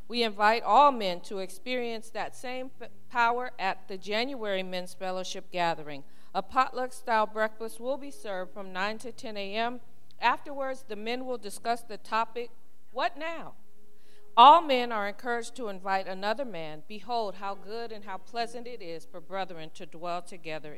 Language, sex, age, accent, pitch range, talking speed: English, female, 40-59, American, 190-225 Hz, 160 wpm